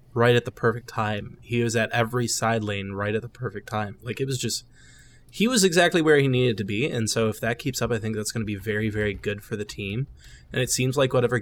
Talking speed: 270 wpm